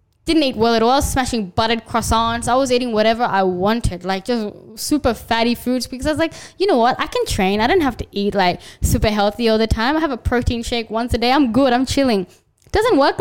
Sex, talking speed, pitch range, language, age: female, 260 wpm, 225-275 Hz, English, 10-29